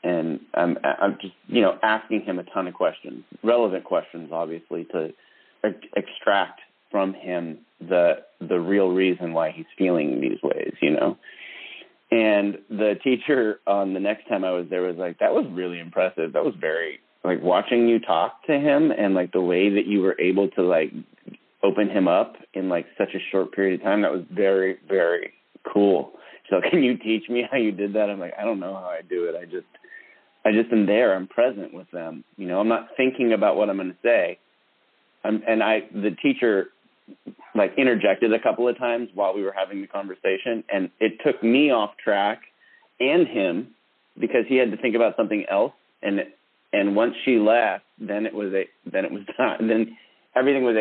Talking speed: 200 wpm